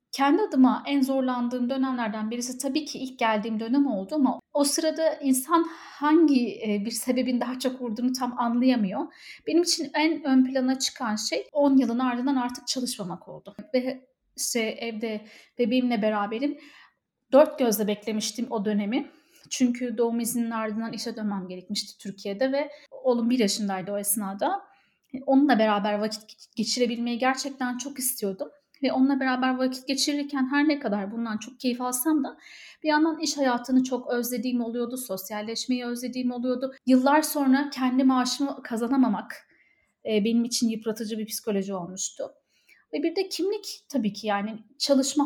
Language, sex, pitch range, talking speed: Turkish, female, 225-275 Hz, 145 wpm